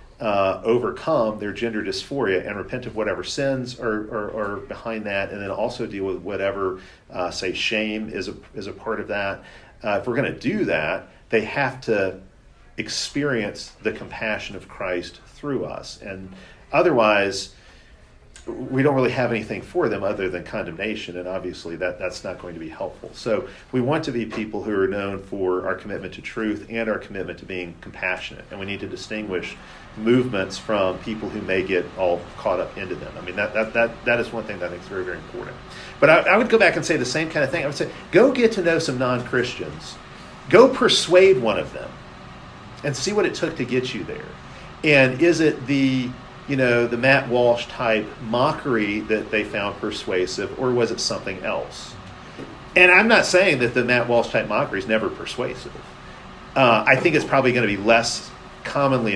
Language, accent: English, American